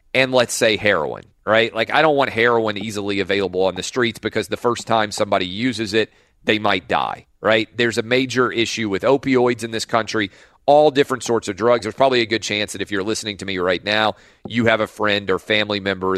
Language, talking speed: English, 225 wpm